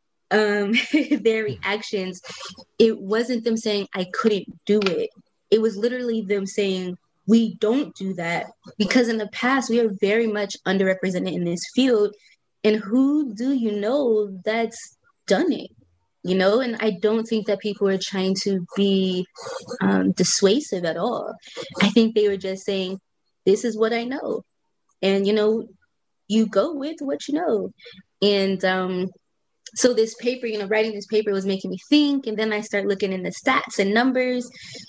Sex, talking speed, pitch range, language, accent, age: female, 170 wpm, 190-230 Hz, English, American, 20-39